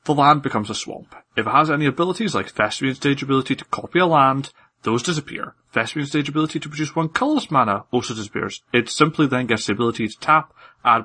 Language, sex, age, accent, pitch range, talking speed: English, male, 30-49, British, 110-150 Hz, 210 wpm